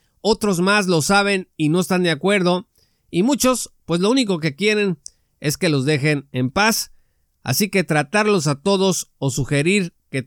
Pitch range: 145-185 Hz